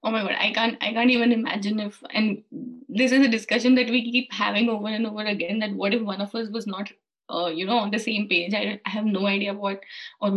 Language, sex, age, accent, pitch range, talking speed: English, female, 20-39, Indian, 200-245 Hz, 255 wpm